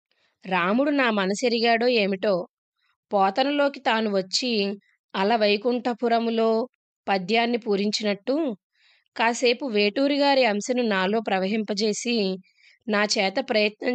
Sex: female